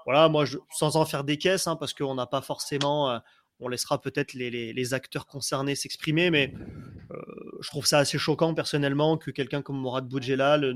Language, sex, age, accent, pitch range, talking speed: French, male, 30-49, French, 140-160 Hz, 205 wpm